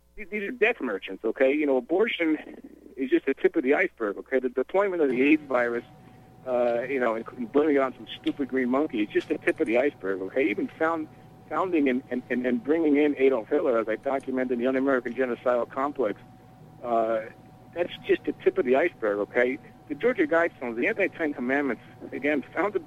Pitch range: 125-150 Hz